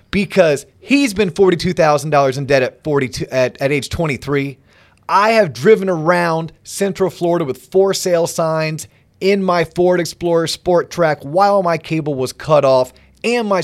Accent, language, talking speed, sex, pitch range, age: American, English, 170 wpm, male, 140-180 Hz, 30-49